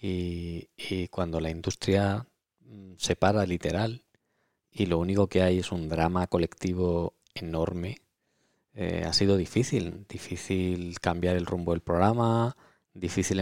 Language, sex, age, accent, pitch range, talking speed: Spanish, male, 20-39, Spanish, 90-105 Hz, 130 wpm